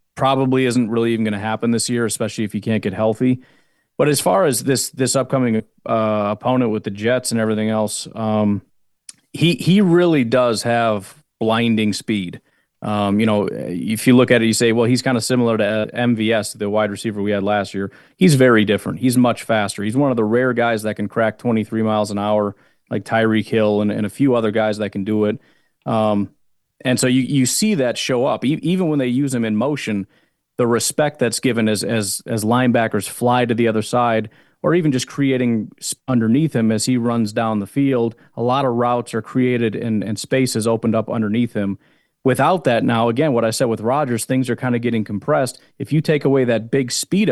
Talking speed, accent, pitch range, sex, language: 220 wpm, American, 110-130 Hz, male, English